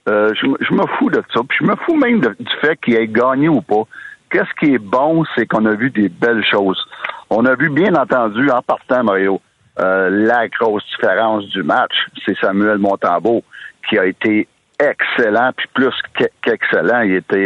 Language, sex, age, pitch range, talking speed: French, male, 60-79, 110-130 Hz, 190 wpm